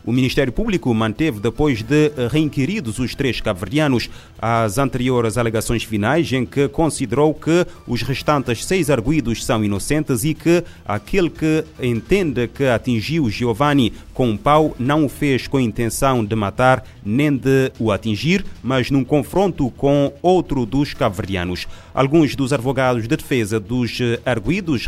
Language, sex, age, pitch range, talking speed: Portuguese, male, 30-49, 110-145 Hz, 145 wpm